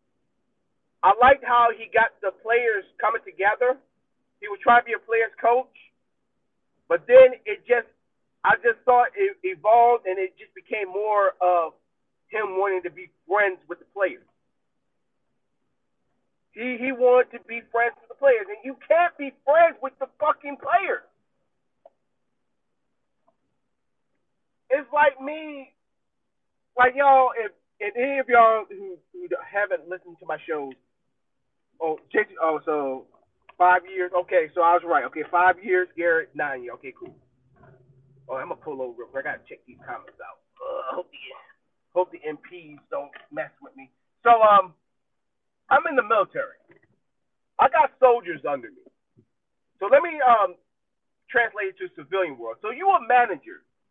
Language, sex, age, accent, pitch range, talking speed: English, male, 40-59, American, 180-285 Hz, 155 wpm